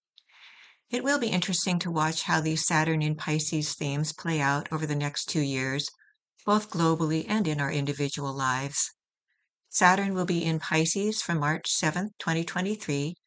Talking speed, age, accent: 160 wpm, 60-79, American